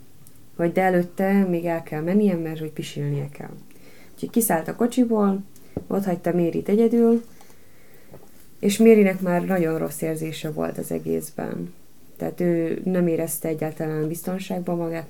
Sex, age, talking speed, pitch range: female, 20-39, 140 wpm, 160-195 Hz